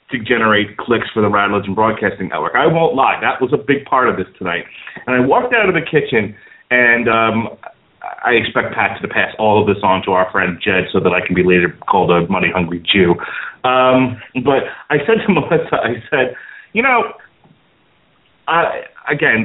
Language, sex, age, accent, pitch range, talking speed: English, male, 30-49, American, 120-170 Hz, 200 wpm